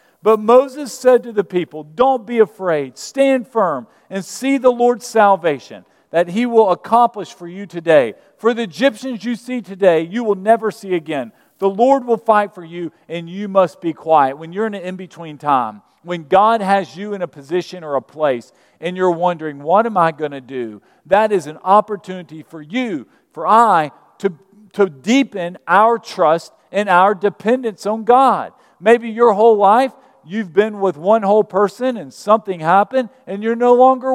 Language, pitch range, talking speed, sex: English, 185-245 Hz, 185 wpm, male